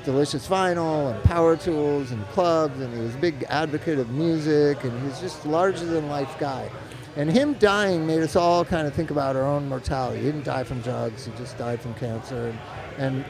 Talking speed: 215 wpm